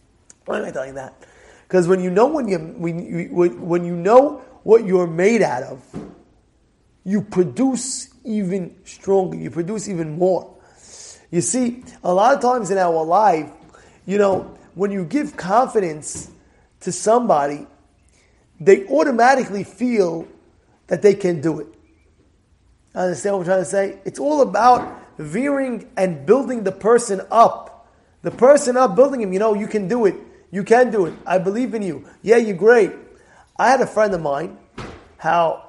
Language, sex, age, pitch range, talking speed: English, male, 30-49, 175-235 Hz, 170 wpm